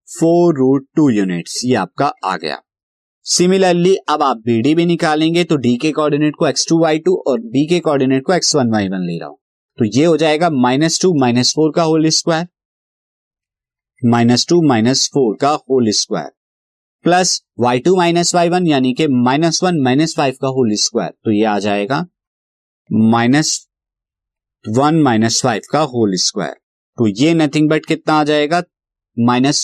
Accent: native